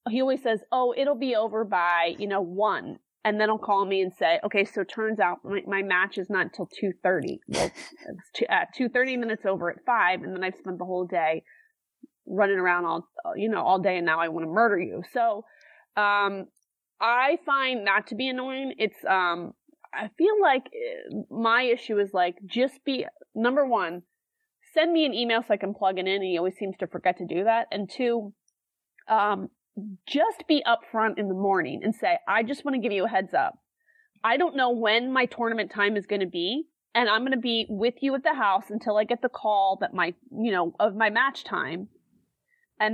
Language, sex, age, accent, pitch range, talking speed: English, female, 20-39, American, 195-250 Hz, 220 wpm